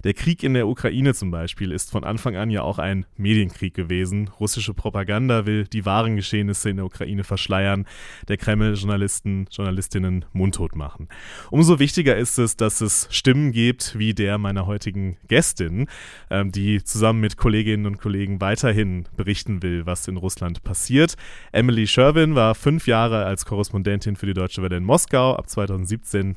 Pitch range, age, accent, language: 100-115 Hz, 30-49, German, German